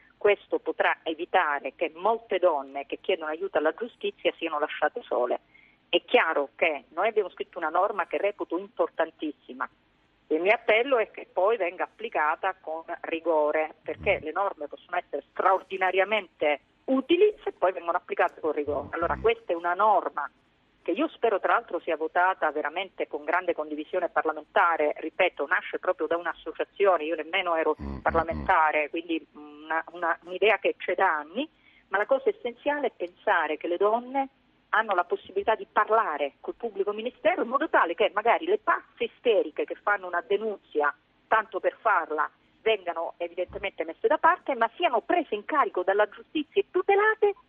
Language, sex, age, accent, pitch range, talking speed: Italian, female, 40-59, native, 165-275 Hz, 165 wpm